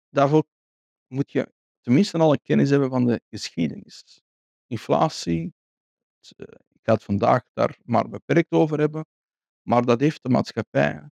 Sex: male